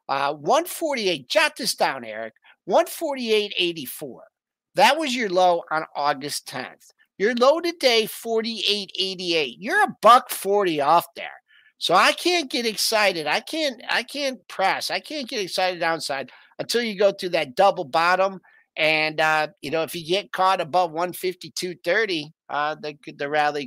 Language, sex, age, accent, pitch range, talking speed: English, male, 50-69, American, 150-225 Hz, 155 wpm